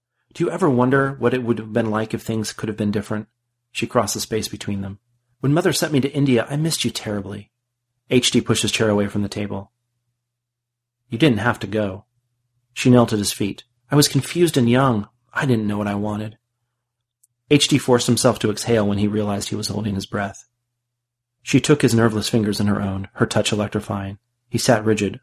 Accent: American